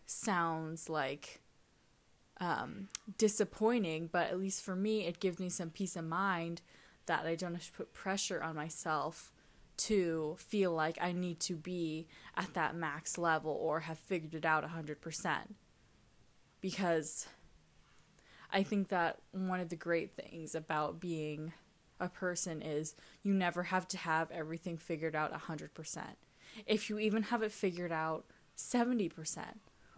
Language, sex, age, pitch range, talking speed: English, female, 10-29, 160-195 Hz, 145 wpm